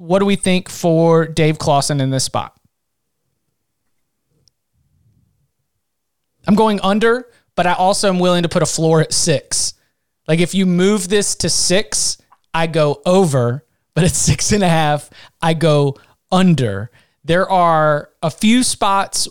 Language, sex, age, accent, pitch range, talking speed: English, male, 30-49, American, 155-185 Hz, 150 wpm